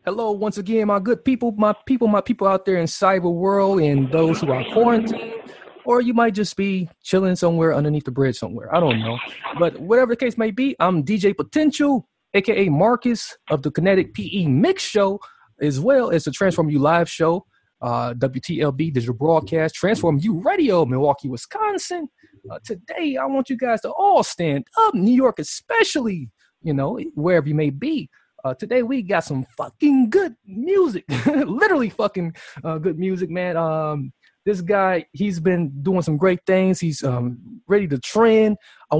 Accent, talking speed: American, 180 wpm